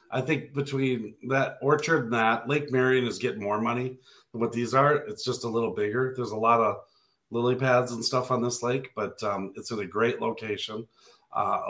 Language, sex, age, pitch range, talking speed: English, male, 40-59, 115-130 Hz, 210 wpm